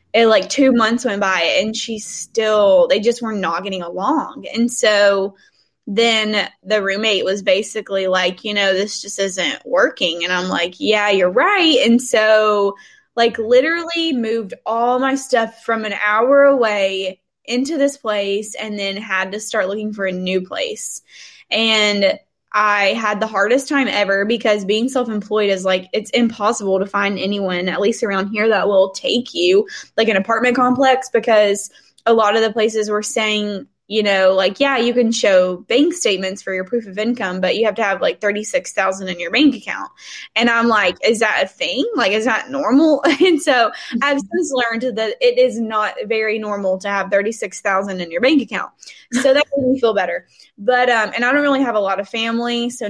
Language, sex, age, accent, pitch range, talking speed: English, female, 10-29, American, 200-255 Hz, 195 wpm